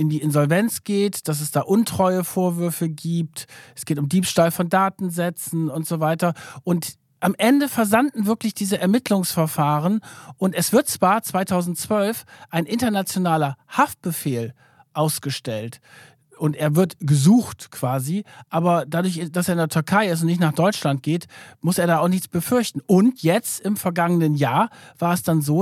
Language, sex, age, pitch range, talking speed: German, male, 50-69, 155-205 Hz, 160 wpm